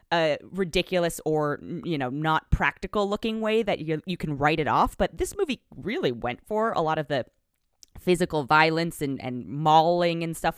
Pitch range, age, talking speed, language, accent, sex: 160-235 Hz, 20-39, 185 wpm, English, American, female